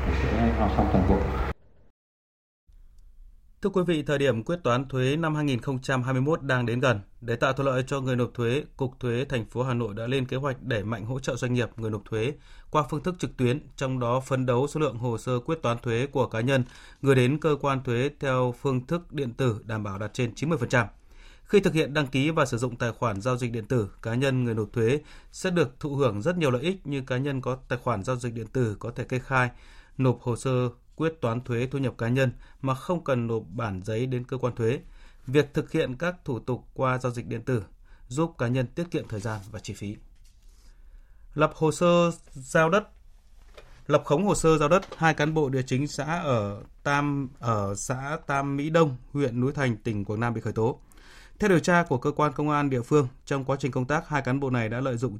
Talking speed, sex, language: 230 wpm, male, Vietnamese